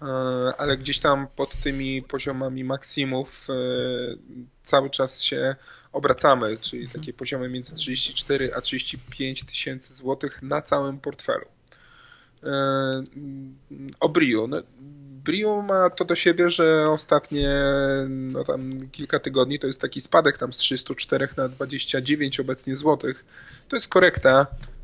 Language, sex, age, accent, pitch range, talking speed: Polish, male, 20-39, native, 130-140 Hz, 125 wpm